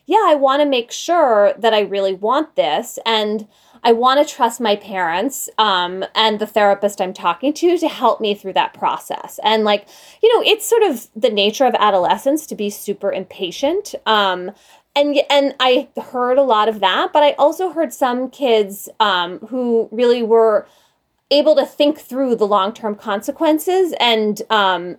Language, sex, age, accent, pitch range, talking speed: English, female, 20-39, American, 200-265 Hz, 180 wpm